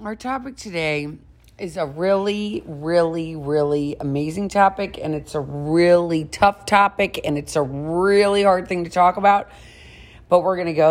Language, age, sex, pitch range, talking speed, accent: English, 40-59, female, 150-195 Hz, 165 wpm, American